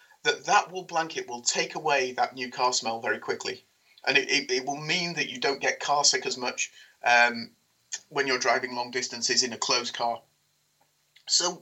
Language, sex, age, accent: English, male, 30-49, British